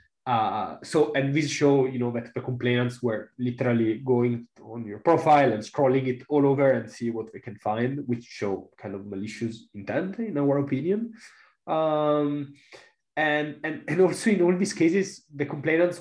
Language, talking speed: English, 175 wpm